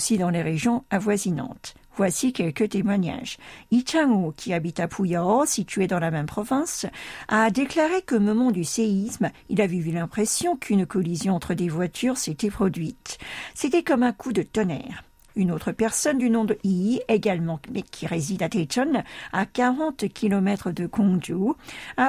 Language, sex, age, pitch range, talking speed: French, female, 50-69, 180-240 Hz, 165 wpm